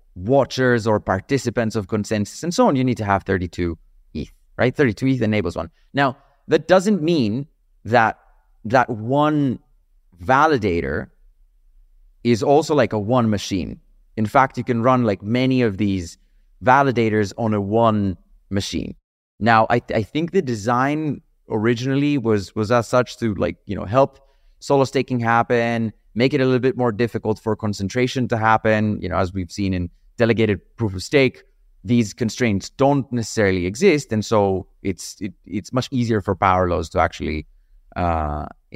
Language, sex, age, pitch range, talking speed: English, male, 30-49, 105-140 Hz, 165 wpm